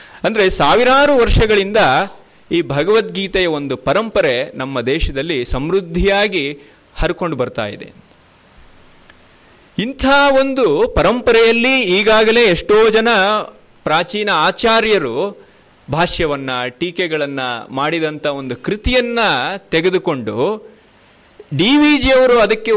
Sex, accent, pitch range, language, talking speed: male, native, 165-255 Hz, Kannada, 80 wpm